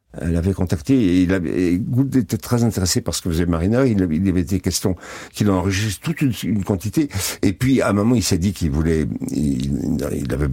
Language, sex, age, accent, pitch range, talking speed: French, male, 60-79, French, 90-130 Hz, 210 wpm